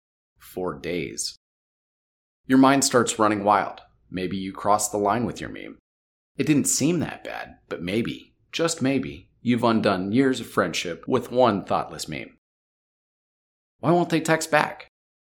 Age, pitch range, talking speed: 40-59, 100-135 Hz, 150 wpm